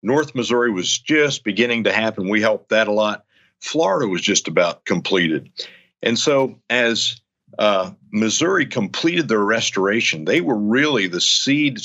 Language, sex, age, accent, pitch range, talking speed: English, male, 50-69, American, 105-130 Hz, 150 wpm